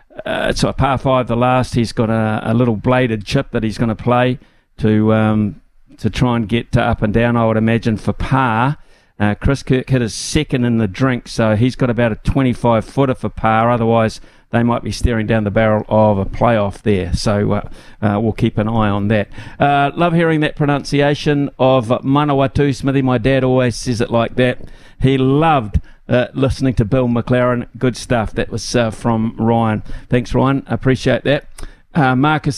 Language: English